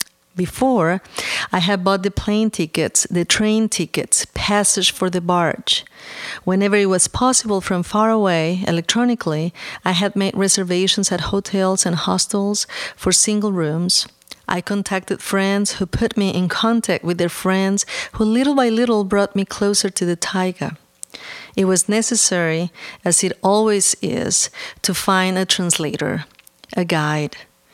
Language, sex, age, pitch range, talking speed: English, female, 40-59, 175-210 Hz, 145 wpm